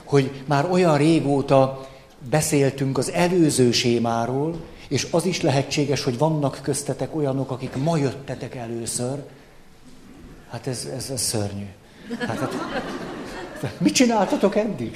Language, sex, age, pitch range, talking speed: Hungarian, male, 60-79, 135-170 Hz, 120 wpm